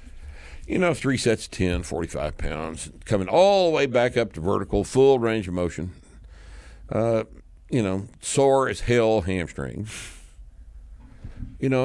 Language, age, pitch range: English, 60-79, 75-110 Hz